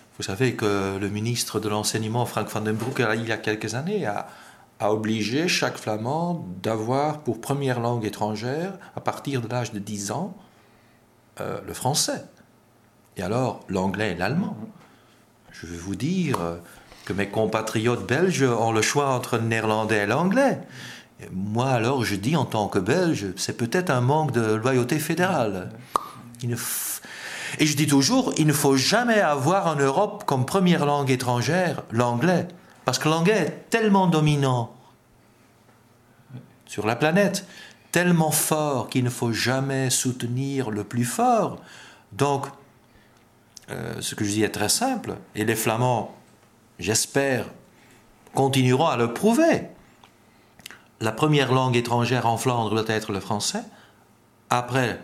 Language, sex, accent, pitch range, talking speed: French, male, French, 110-150 Hz, 150 wpm